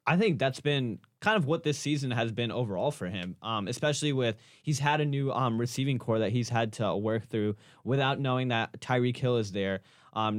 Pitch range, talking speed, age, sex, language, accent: 110-135 Hz, 220 wpm, 10-29, male, English, American